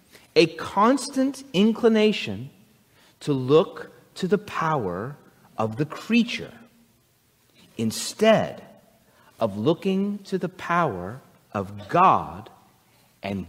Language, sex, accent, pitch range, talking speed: English, male, American, 165-230 Hz, 90 wpm